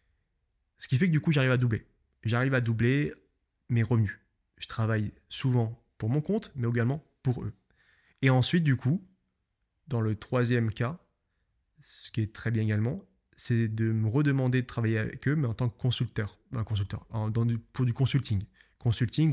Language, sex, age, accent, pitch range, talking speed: French, male, 20-39, French, 105-130 Hz, 185 wpm